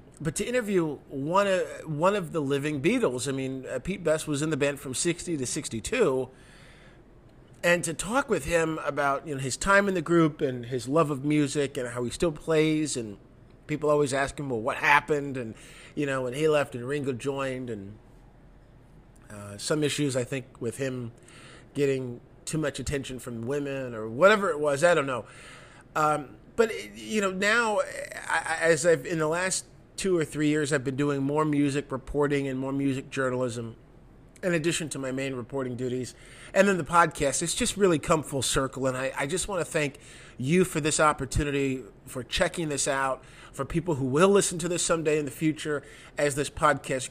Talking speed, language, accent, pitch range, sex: 195 wpm, English, American, 130-160 Hz, male